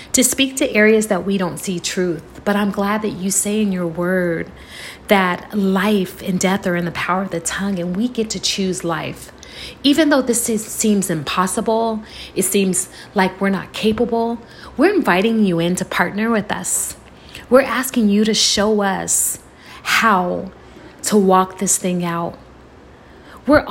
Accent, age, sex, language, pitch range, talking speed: American, 30-49, female, English, 180-220 Hz, 170 wpm